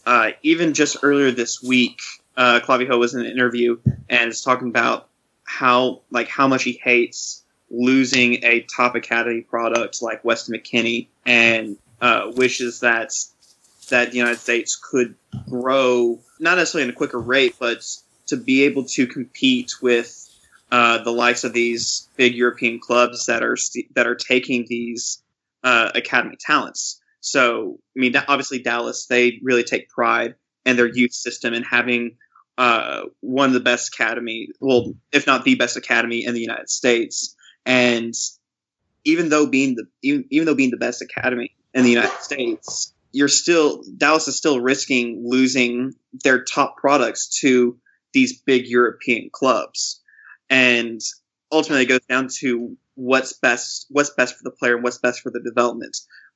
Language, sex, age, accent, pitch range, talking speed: English, male, 20-39, American, 120-130 Hz, 160 wpm